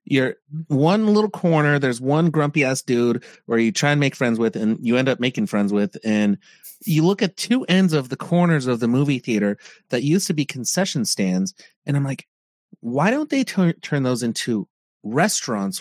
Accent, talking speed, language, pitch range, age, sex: American, 195 wpm, English, 135-190 Hz, 30-49, male